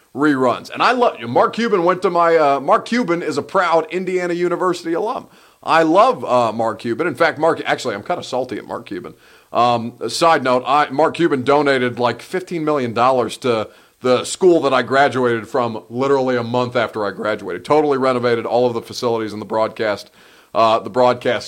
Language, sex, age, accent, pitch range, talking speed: English, male, 40-59, American, 125-170 Hz, 195 wpm